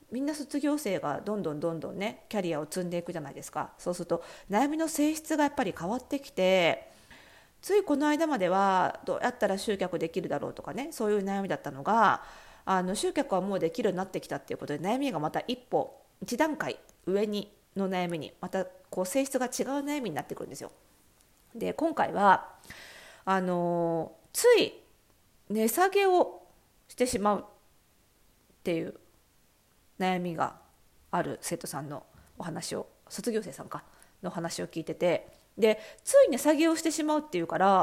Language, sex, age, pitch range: Japanese, female, 40-59, 185-285 Hz